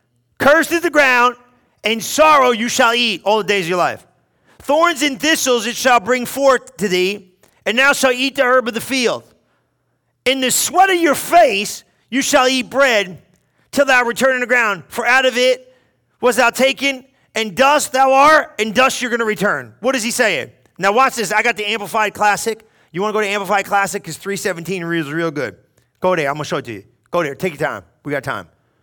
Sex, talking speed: male, 225 wpm